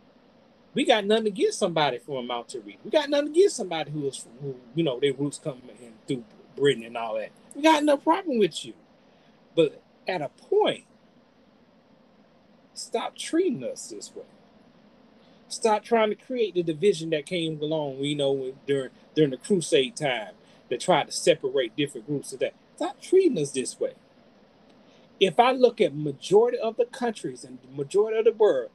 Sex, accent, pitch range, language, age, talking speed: male, American, 165-255 Hz, English, 30-49, 185 wpm